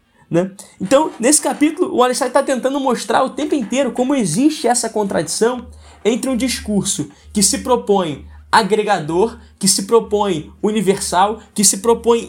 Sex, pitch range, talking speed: male, 180-250 Hz, 145 wpm